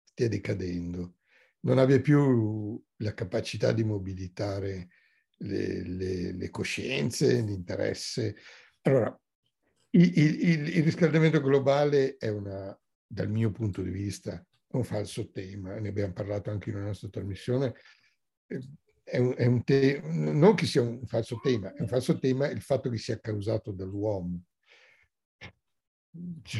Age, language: 60-79, Italian